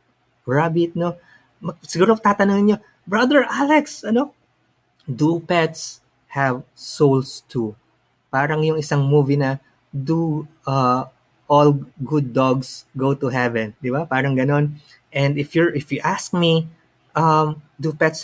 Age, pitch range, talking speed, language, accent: 20-39, 135-175 Hz, 130 wpm, English, Filipino